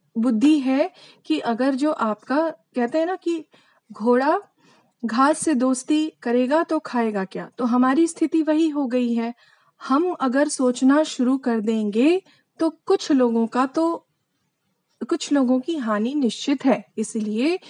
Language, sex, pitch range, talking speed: Hindi, female, 225-295 Hz, 145 wpm